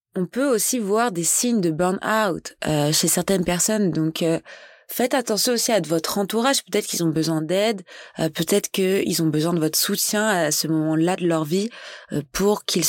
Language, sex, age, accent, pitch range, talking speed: French, female, 20-39, French, 160-205 Hz, 190 wpm